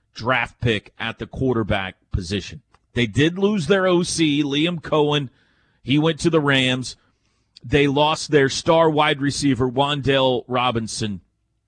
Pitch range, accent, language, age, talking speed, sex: 115-160 Hz, American, English, 40-59, 135 wpm, male